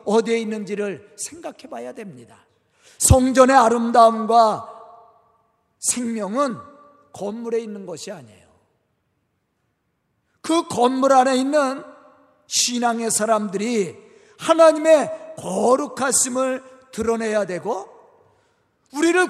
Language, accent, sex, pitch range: Korean, native, male, 230-295 Hz